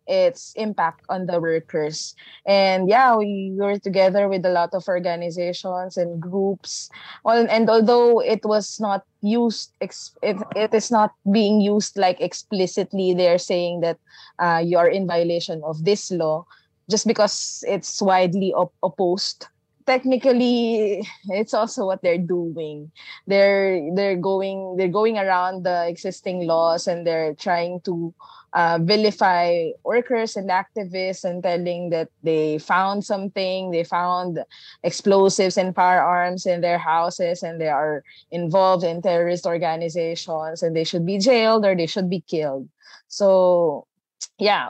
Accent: Filipino